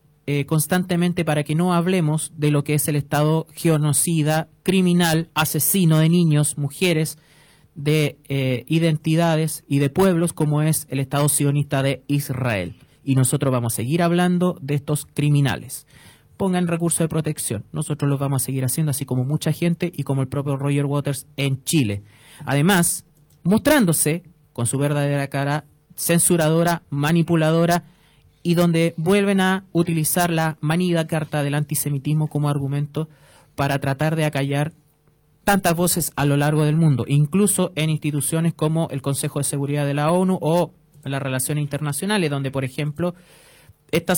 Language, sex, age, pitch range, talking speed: Spanish, male, 30-49, 145-165 Hz, 150 wpm